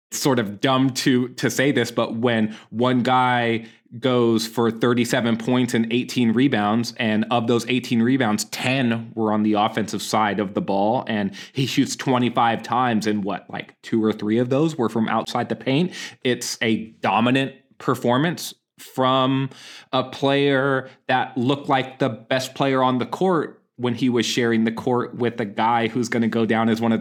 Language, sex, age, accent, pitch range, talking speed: English, male, 20-39, American, 115-140 Hz, 185 wpm